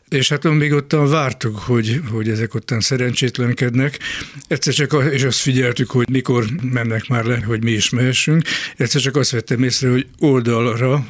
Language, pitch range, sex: Hungarian, 120-135 Hz, male